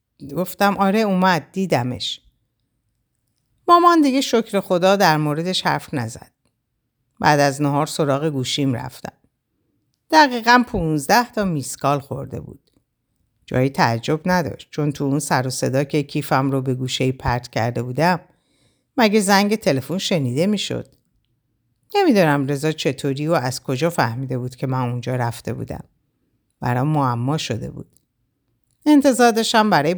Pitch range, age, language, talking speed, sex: 130-180 Hz, 50-69, Persian, 130 wpm, female